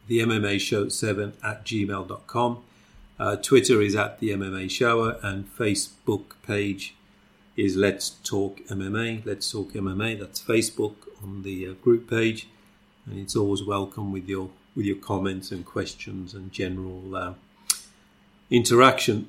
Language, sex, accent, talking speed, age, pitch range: English, male, British, 135 wpm, 50-69, 100-115 Hz